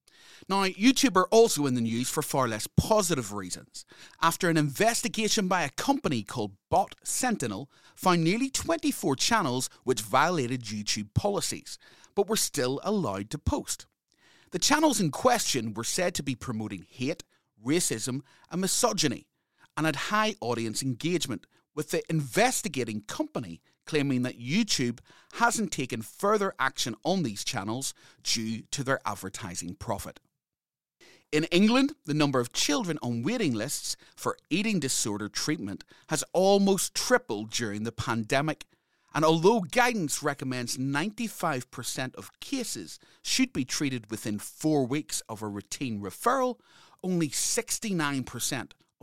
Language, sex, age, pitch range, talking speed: English, male, 30-49, 120-195 Hz, 135 wpm